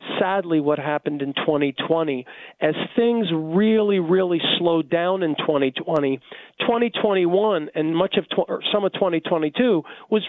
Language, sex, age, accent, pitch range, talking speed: English, male, 40-59, American, 160-205 Hz, 120 wpm